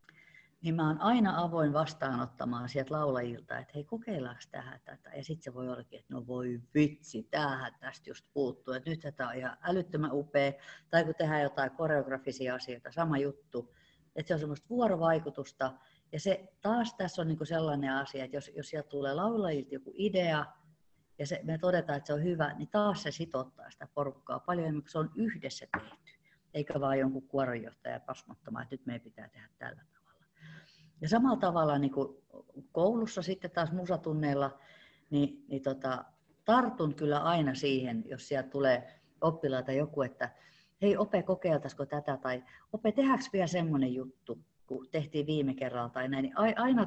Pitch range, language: 135-175 Hz, Finnish